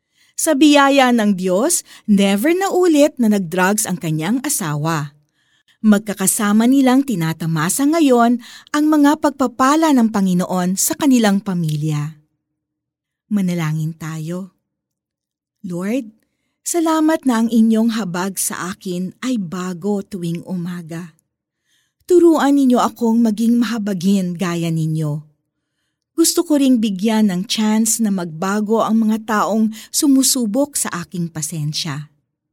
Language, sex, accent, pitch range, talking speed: Filipino, female, native, 170-255 Hz, 110 wpm